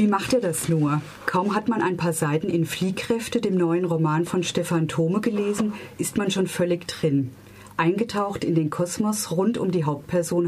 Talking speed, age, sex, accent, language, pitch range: 190 wpm, 40-59, female, German, German, 155-190 Hz